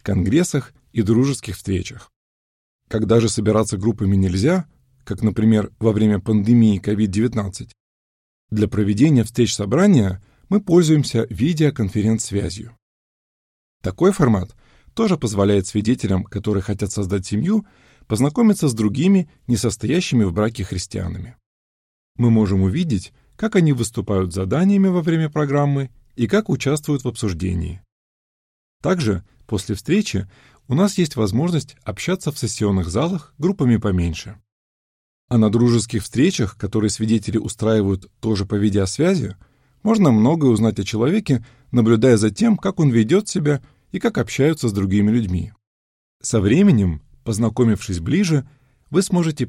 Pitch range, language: 100-145 Hz, Russian